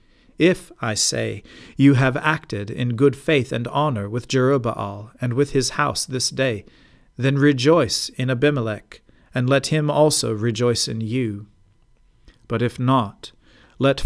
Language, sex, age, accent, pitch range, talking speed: English, male, 40-59, American, 110-140 Hz, 145 wpm